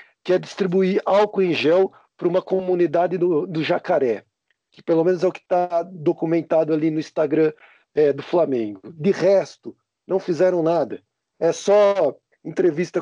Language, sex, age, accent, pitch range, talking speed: Portuguese, male, 50-69, Brazilian, 160-195 Hz, 155 wpm